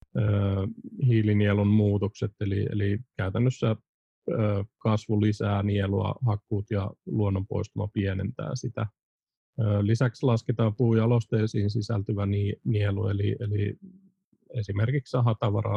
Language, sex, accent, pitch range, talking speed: Finnish, male, native, 100-120 Hz, 90 wpm